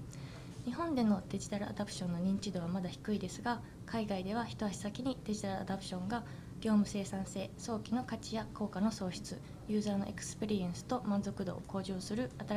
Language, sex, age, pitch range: Japanese, female, 20-39, 185-220 Hz